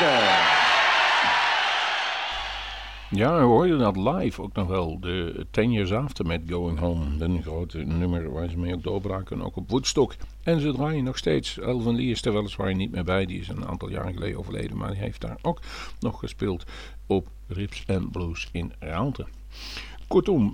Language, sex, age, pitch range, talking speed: Dutch, male, 50-69, 85-110 Hz, 170 wpm